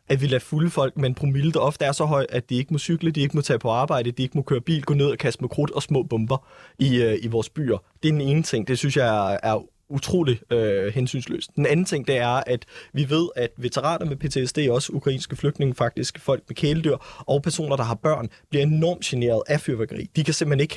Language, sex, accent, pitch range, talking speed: Danish, male, native, 125-150 Hz, 255 wpm